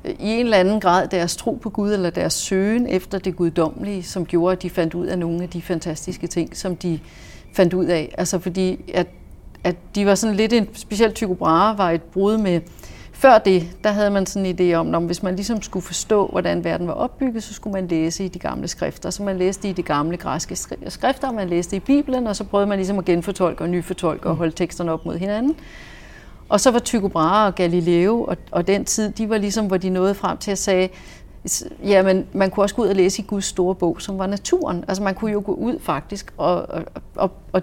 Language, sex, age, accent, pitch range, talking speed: Danish, female, 30-49, native, 175-210 Hz, 230 wpm